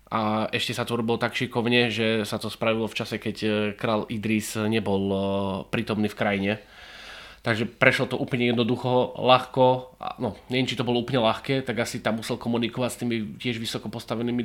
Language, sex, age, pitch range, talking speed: English, male, 20-39, 110-125 Hz, 175 wpm